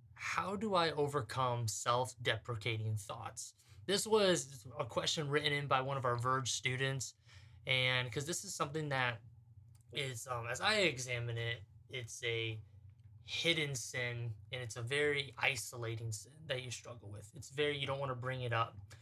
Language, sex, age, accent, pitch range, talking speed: English, male, 20-39, American, 115-155 Hz, 165 wpm